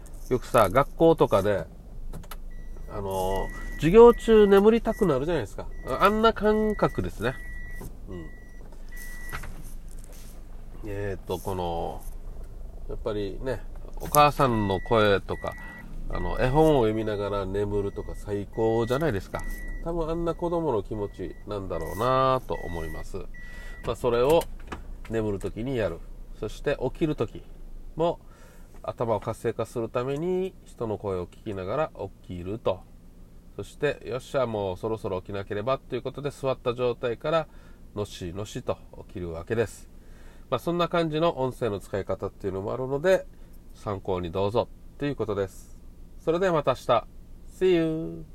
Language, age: Japanese, 40-59